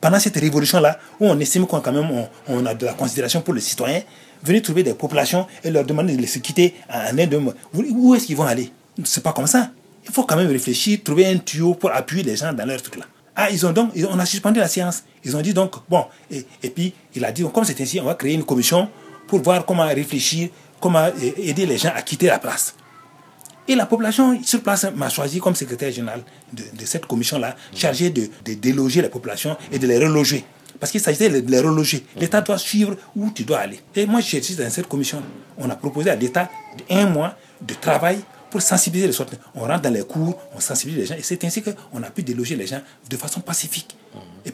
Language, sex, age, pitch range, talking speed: French, male, 40-59, 140-195 Hz, 240 wpm